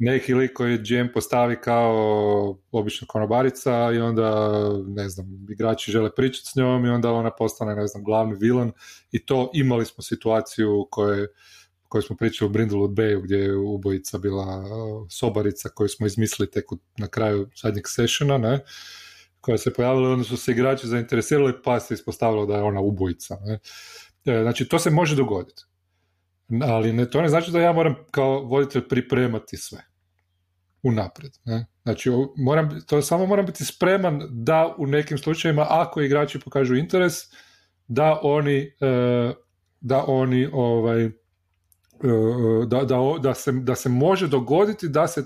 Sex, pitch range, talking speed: male, 105-135 Hz, 155 wpm